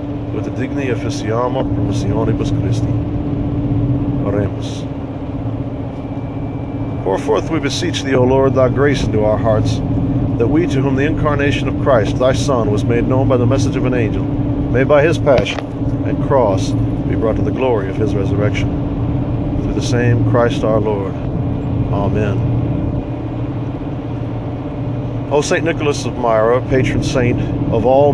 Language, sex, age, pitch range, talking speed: English, male, 50-69, 120-140 Hz, 145 wpm